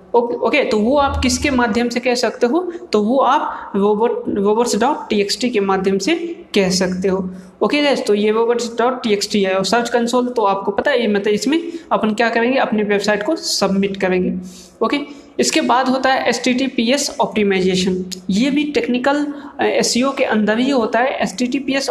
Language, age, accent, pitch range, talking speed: Hindi, 20-39, native, 205-255 Hz, 190 wpm